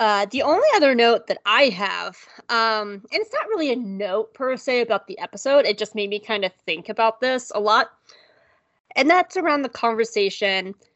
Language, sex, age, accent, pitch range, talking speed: English, female, 20-39, American, 205-275 Hz, 195 wpm